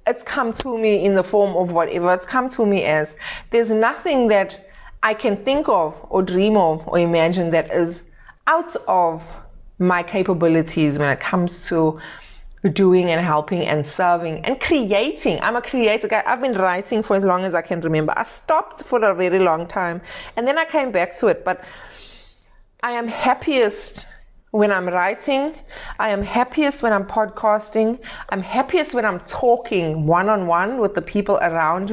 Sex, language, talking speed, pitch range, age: female, English, 175 wpm, 180-240 Hz, 30-49